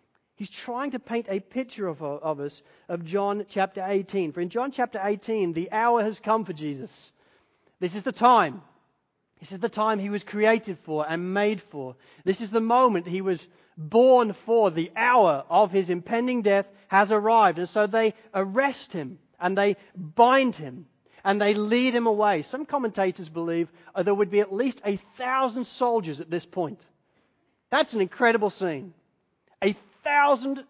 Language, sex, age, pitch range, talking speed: English, male, 40-59, 175-230 Hz, 175 wpm